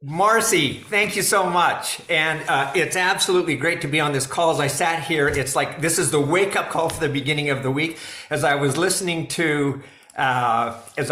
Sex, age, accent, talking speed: male, 50-69, American, 215 wpm